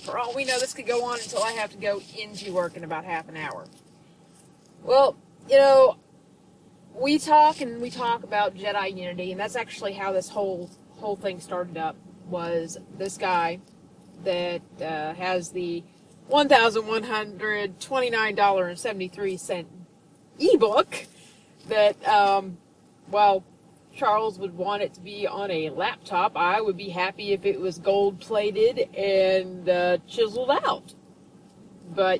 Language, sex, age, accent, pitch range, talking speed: English, female, 30-49, American, 180-220 Hz, 160 wpm